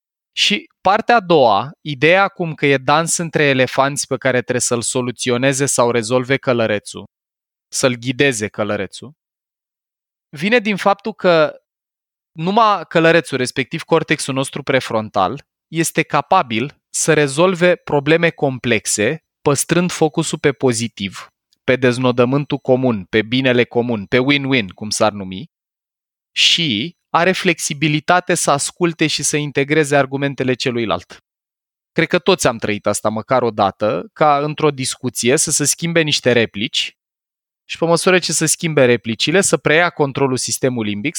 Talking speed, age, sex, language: 135 wpm, 20-39, male, Romanian